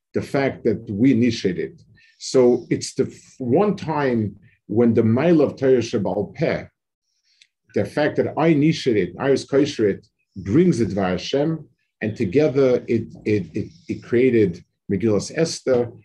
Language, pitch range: English, 110-150 Hz